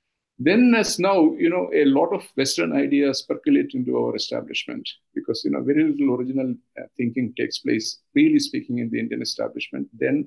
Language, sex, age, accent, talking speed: English, male, 50-69, Indian, 180 wpm